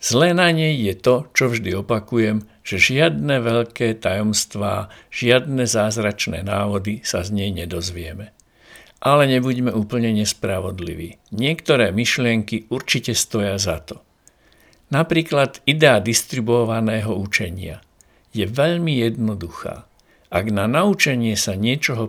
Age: 60-79